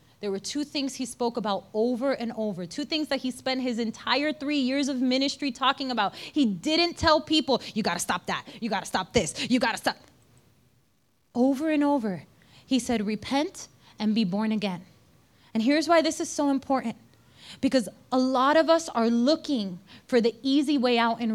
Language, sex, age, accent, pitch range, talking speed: English, female, 20-39, American, 230-285 Hz, 200 wpm